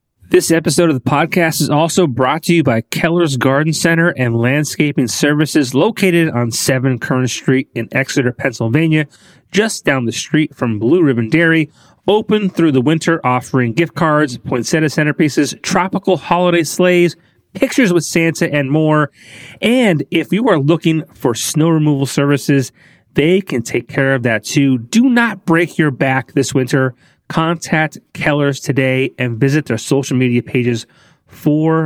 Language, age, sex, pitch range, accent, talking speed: English, 30-49, male, 130-170 Hz, American, 155 wpm